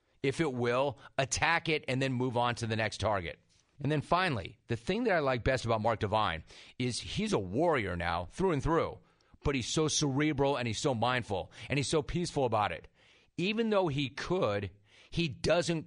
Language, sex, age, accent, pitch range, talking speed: English, male, 40-59, American, 115-145 Hz, 200 wpm